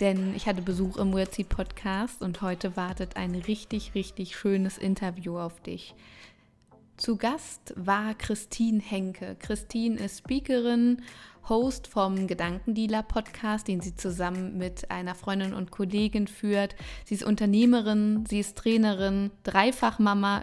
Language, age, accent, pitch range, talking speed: German, 20-39, German, 190-215 Hz, 130 wpm